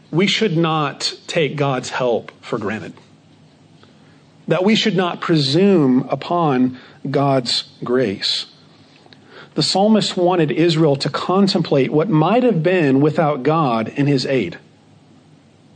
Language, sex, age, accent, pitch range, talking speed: English, male, 40-59, American, 150-190 Hz, 120 wpm